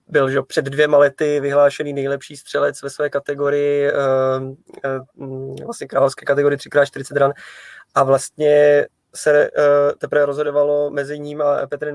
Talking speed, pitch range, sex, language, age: 125 wpm, 140-150 Hz, male, Czech, 20-39